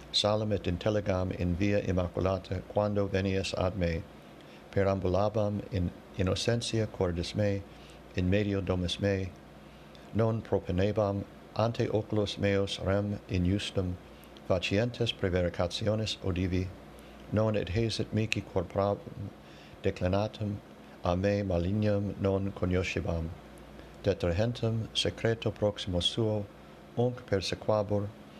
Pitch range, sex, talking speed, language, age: 90-105 Hz, male, 95 wpm, English, 60-79